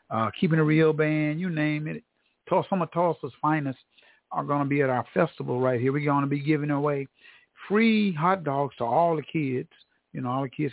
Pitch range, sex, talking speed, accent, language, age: 140-175 Hz, male, 220 wpm, American, English, 50-69